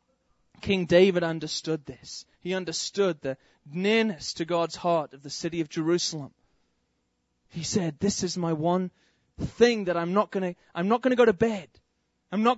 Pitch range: 145-200 Hz